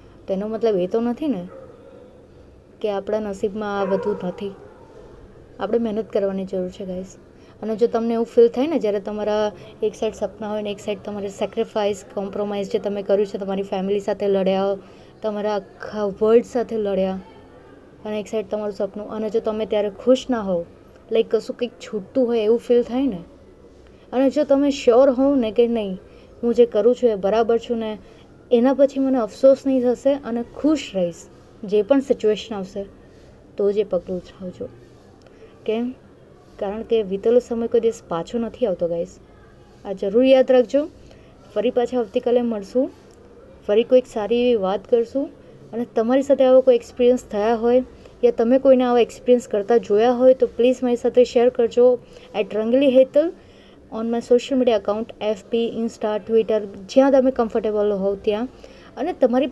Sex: female